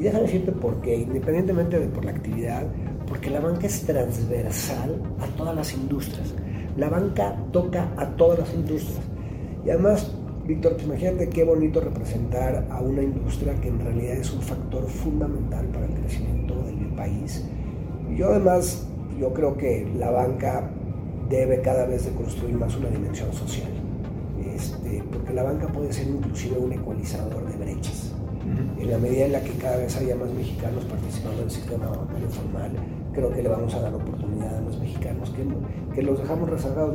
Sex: male